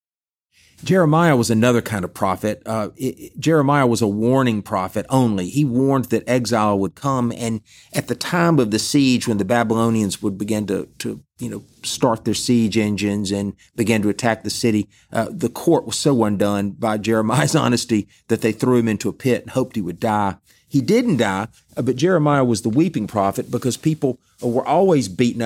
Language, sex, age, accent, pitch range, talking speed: English, male, 40-59, American, 105-145 Hz, 195 wpm